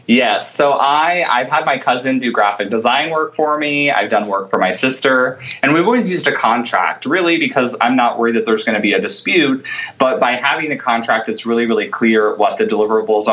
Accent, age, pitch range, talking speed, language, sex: American, 20-39, 105-140 Hz, 215 wpm, English, male